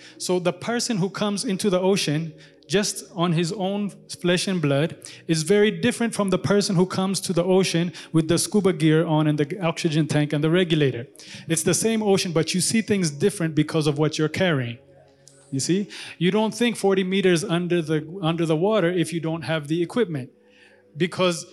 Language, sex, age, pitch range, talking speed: English, male, 30-49, 165-205 Hz, 200 wpm